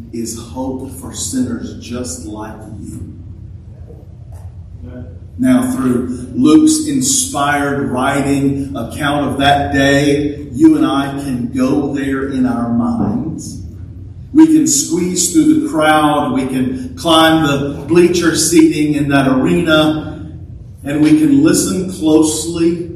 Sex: male